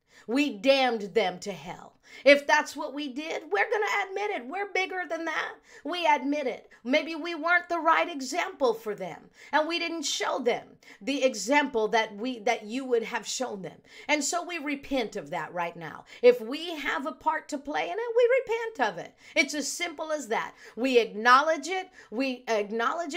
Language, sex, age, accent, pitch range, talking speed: English, female, 50-69, American, 220-310 Hz, 195 wpm